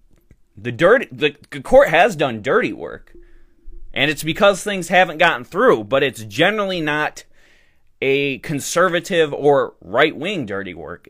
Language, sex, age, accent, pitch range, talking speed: English, male, 20-39, American, 125-175 Hz, 135 wpm